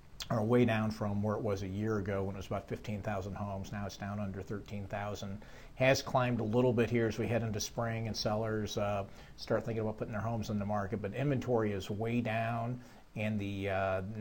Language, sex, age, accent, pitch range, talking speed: English, male, 50-69, American, 100-115 Hz, 220 wpm